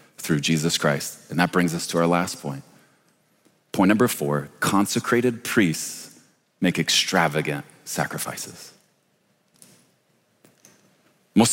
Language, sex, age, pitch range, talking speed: English, male, 30-49, 105-175 Hz, 105 wpm